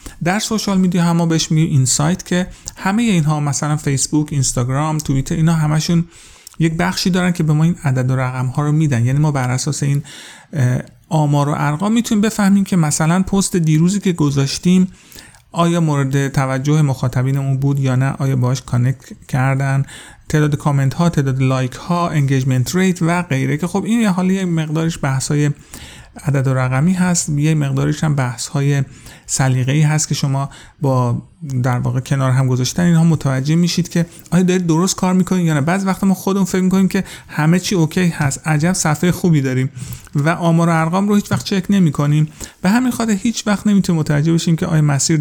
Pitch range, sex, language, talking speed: 140-175 Hz, male, Persian, 185 wpm